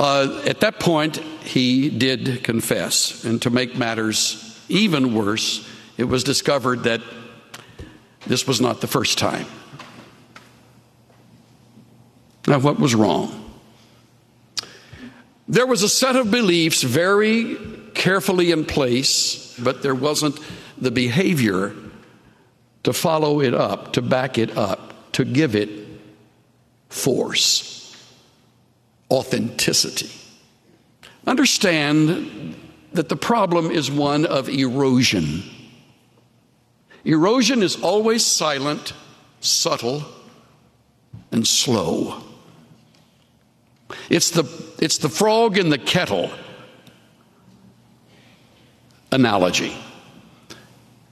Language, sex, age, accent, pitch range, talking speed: English, male, 60-79, American, 120-165 Hz, 95 wpm